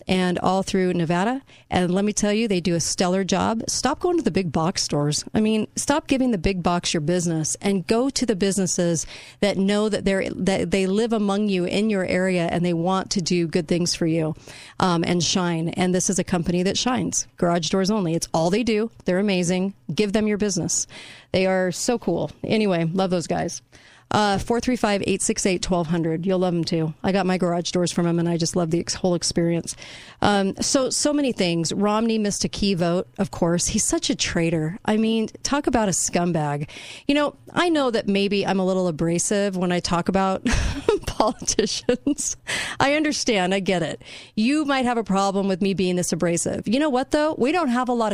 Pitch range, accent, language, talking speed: 175-215 Hz, American, English, 215 wpm